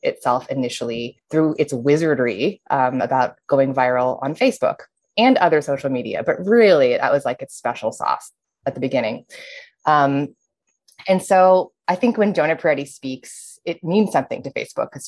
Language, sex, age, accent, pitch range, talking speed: English, female, 20-39, American, 135-175 Hz, 165 wpm